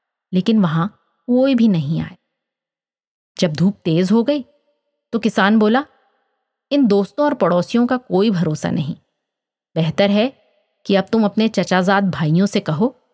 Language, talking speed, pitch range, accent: Hindi, 145 wpm, 175-235 Hz, native